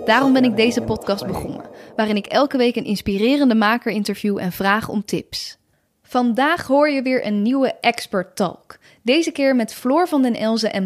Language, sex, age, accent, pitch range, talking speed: Dutch, female, 10-29, Dutch, 210-265 Hz, 180 wpm